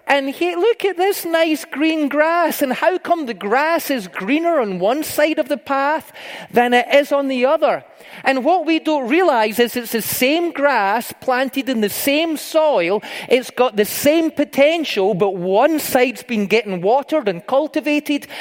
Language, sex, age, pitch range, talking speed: English, male, 30-49, 235-310 Hz, 175 wpm